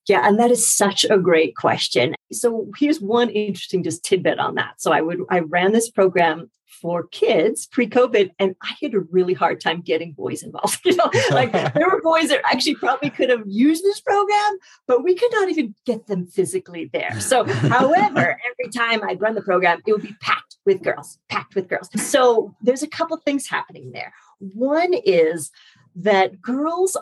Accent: American